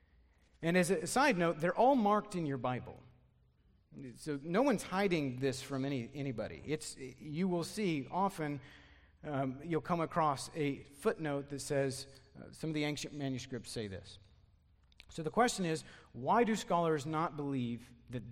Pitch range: 115-165 Hz